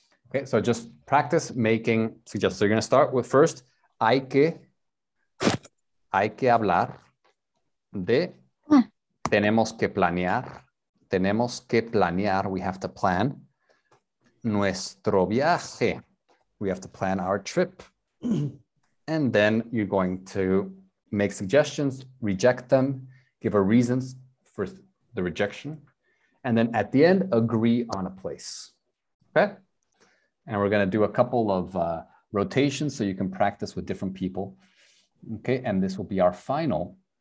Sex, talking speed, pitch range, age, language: male, 140 wpm, 95-130 Hz, 30-49, English